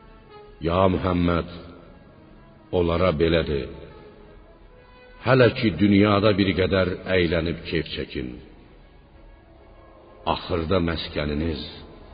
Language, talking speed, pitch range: Persian, 70 wpm, 85-115 Hz